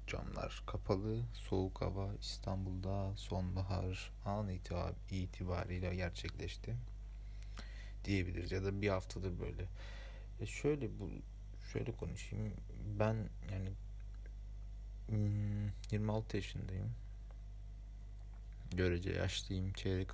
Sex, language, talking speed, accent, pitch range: male, Turkish, 80 wpm, native, 95-110 Hz